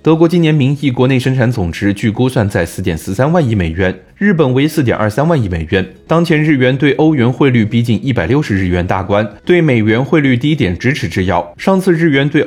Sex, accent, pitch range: male, native, 100-150 Hz